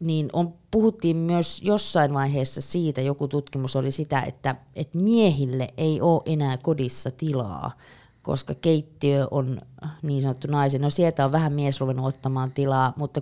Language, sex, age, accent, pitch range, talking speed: Finnish, female, 20-39, native, 130-160 Hz, 145 wpm